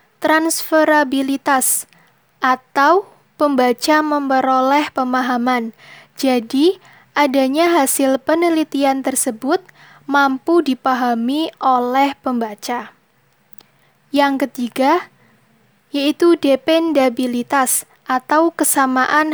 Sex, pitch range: female, 260-315 Hz